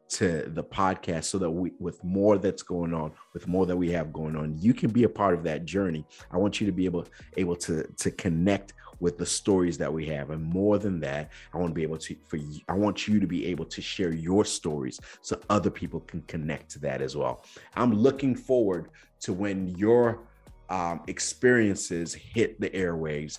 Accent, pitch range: American, 80-100 Hz